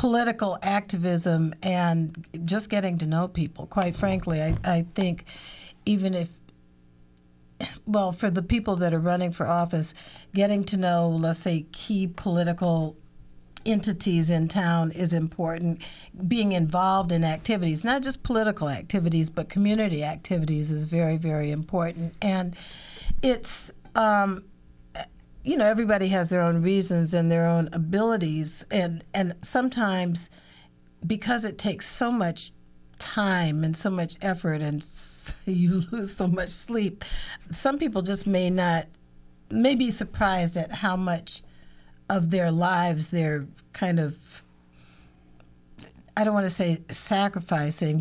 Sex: female